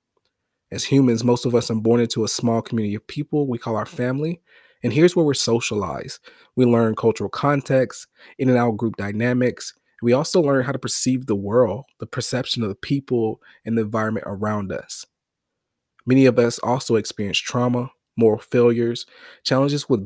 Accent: American